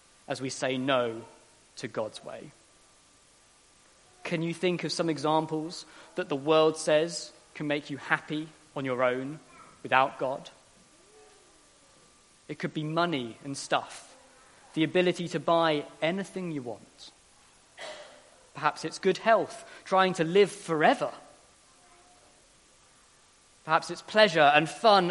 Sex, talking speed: male, 125 wpm